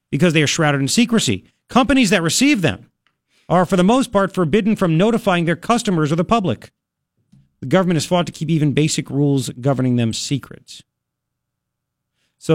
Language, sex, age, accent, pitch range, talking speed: English, male, 50-69, American, 135-200 Hz, 170 wpm